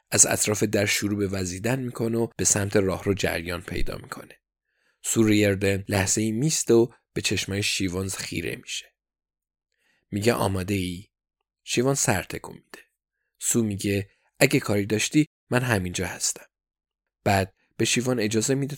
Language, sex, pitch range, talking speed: Persian, male, 100-120 Hz, 145 wpm